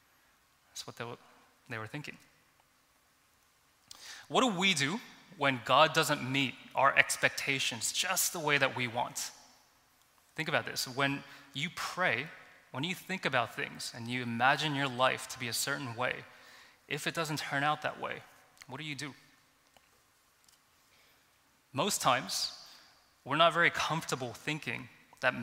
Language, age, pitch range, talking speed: English, 20-39, 125-150 Hz, 145 wpm